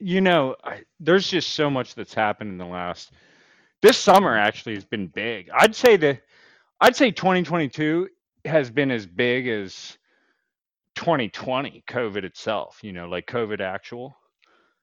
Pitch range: 100-140 Hz